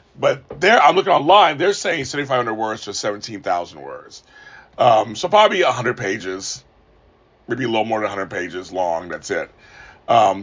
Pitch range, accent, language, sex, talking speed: 100-145 Hz, American, English, male, 160 wpm